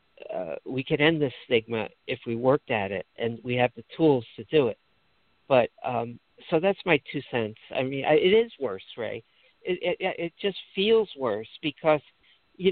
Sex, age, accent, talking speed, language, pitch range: male, 60-79, American, 195 wpm, English, 140-190 Hz